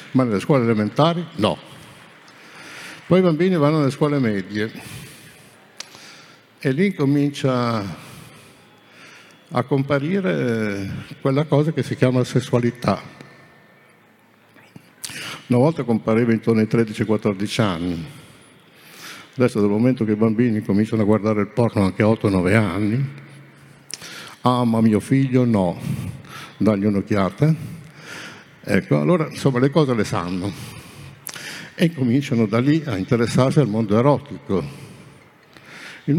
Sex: male